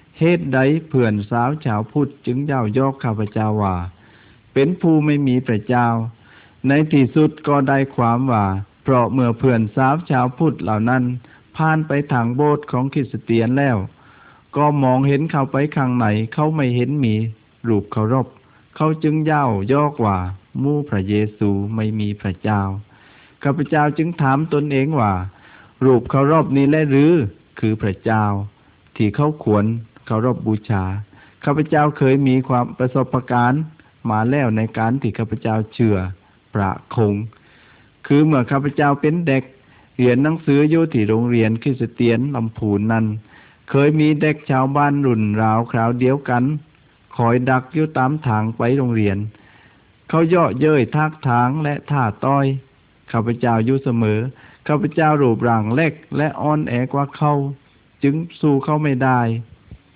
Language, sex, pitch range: Malay, male, 110-145 Hz